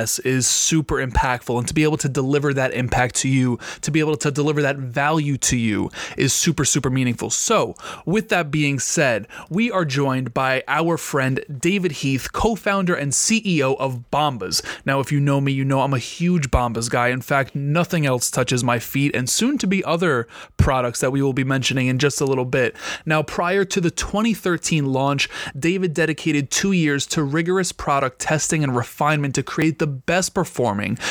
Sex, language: male, English